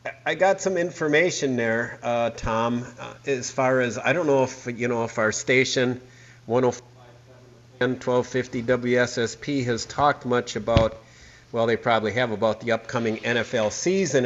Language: English